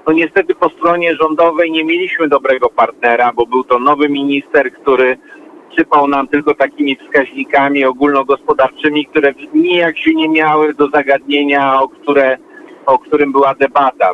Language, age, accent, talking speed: Polish, 50-69, native, 140 wpm